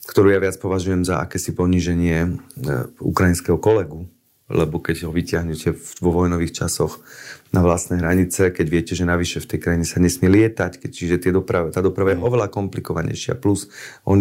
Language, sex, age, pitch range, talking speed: Slovak, male, 30-49, 85-100 Hz, 175 wpm